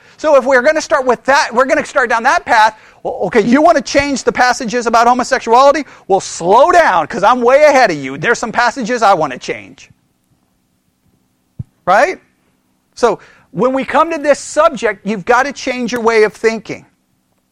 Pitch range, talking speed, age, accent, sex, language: 185-260 Hz, 190 wpm, 40-59, American, male, English